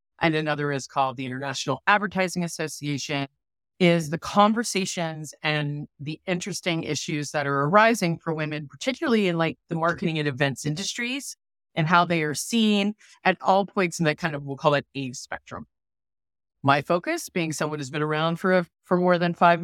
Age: 30-49